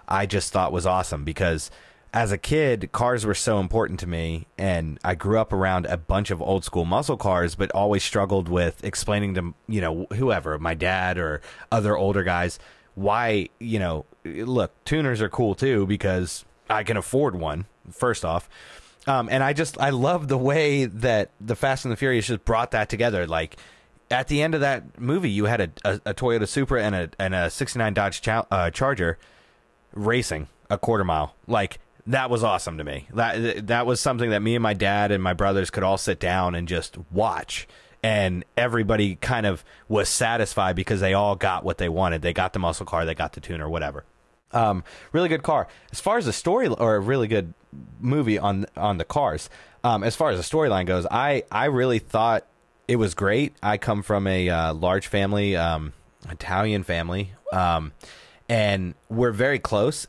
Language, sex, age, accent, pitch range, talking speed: English, male, 30-49, American, 90-120 Hz, 195 wpm